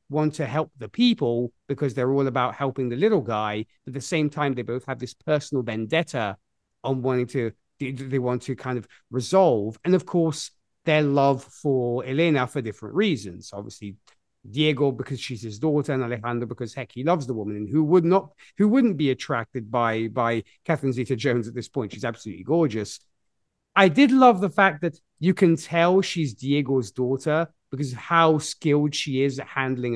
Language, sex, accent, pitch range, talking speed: English, male, British, 120-160 Hz, 190 wpm